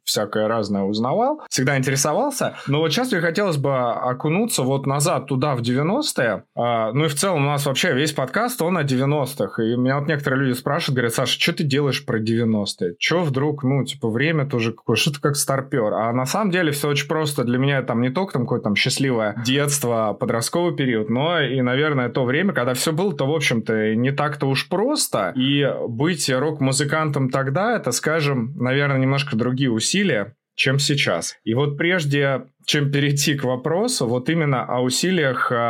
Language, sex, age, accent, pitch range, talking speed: Russian, male, 20-39, native, 125-150 Hz, 185 wpm